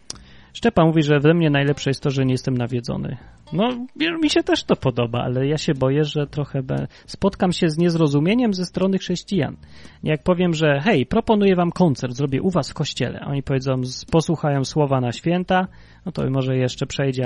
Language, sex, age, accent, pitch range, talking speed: Polish, male, 30-49, native, 130-180 Hz, 195 wpm